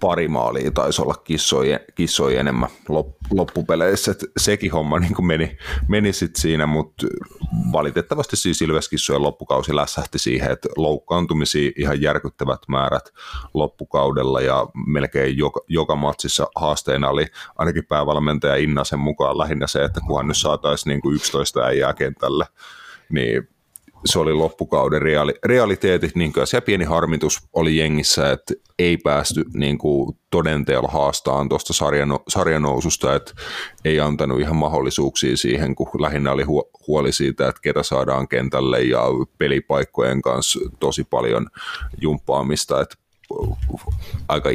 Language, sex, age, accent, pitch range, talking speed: Finnish, male, 30-49, native, 70-80 Hz, 125 wpm